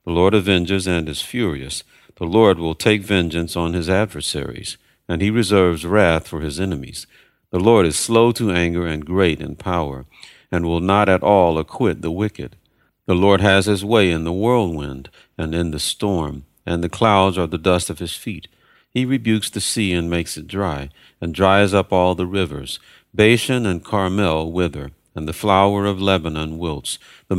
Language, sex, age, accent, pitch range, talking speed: English, male, 50-69, American, 80-105 Hz, 185 wpm